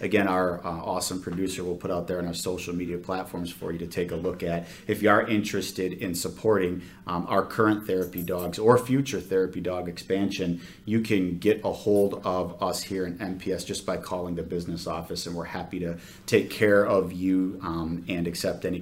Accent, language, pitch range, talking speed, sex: American, English, 90-105 Hz, 205 wpm, male